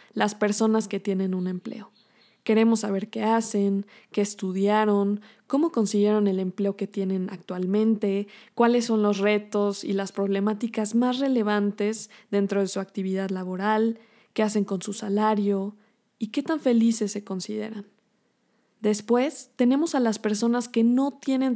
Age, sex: 20-39, female